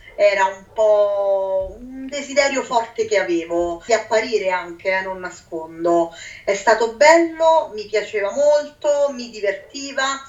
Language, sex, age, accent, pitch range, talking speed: Italian, female, 30-49, native, 195-280 Hz, 130 wpm